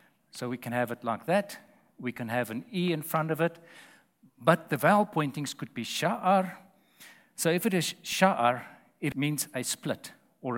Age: 50-69